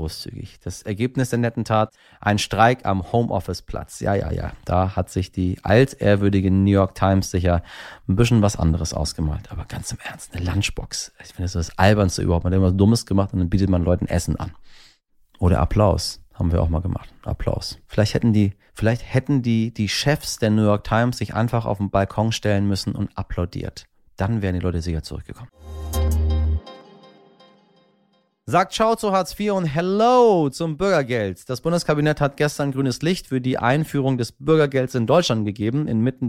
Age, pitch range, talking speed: 30-49, 95-130 Hz, 180 wpm